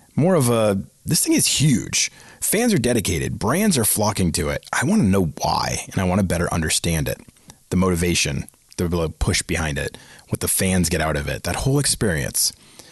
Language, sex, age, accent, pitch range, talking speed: English, male, 30-49, American, 85-115 Hz, 200 wpm